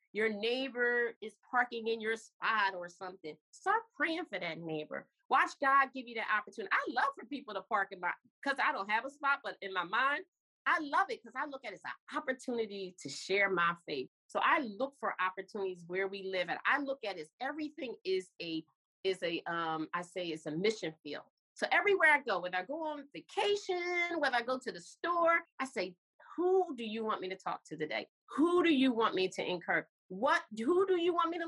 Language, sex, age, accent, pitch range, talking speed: English, female, 30-49, American, 195-310 Hz, 225 wpm